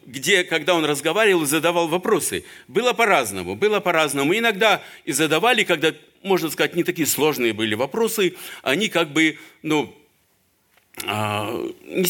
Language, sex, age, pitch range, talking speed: Russian, male, 50-69, 140-195 Hz, 135 wpm